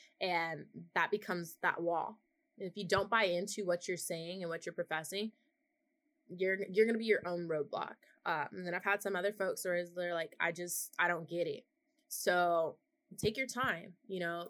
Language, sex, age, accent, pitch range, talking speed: English, female, 20-39, American, 170-210 Hz, 205 wpm